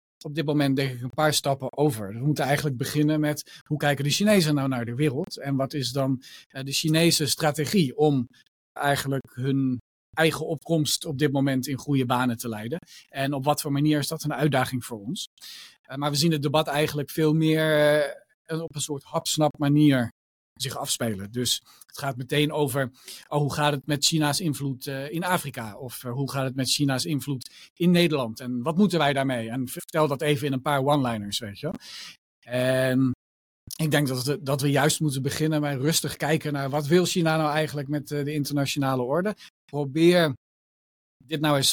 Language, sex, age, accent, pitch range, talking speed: Dutch, male, 40-59, Dutch, 130-150 Hz, 195 wpm